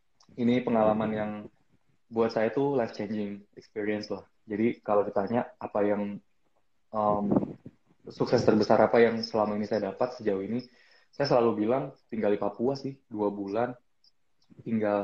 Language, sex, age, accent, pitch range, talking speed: Indonesian, male, 20-39, native, 105-120 Hz, 145 wpm